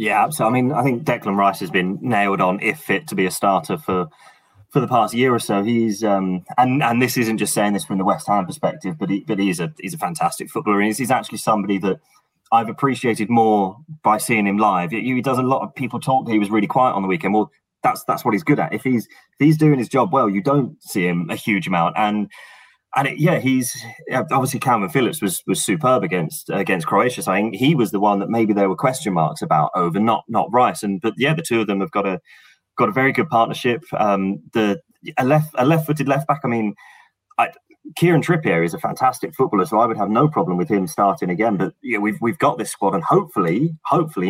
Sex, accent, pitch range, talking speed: male, British, 100-130 Hz, 250 wpm